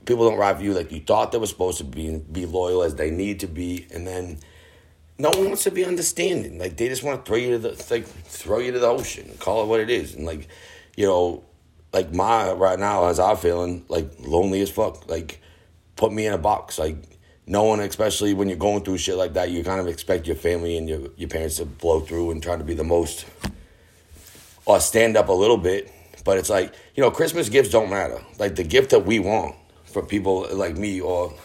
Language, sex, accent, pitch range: English, male, American, 85-100 Hz